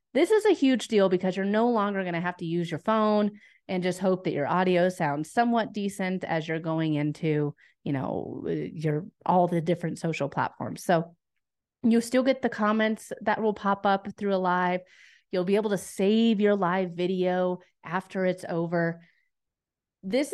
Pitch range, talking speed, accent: 170-215 Hz, 185 wpm, American